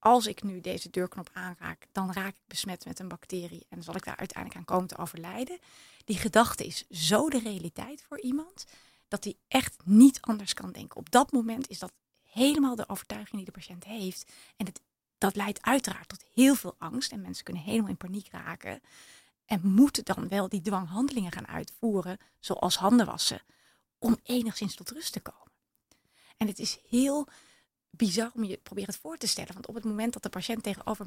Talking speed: 195 wpm